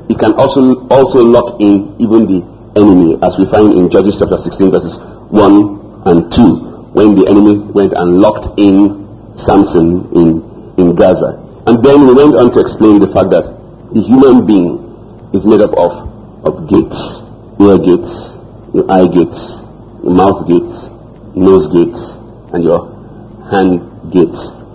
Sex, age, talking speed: male, 50-69, 155 wpm